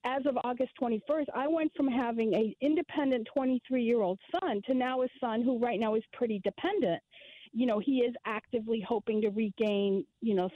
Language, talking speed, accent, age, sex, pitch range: English, 180 wpm, American, 40-59, female, 220-295 Hz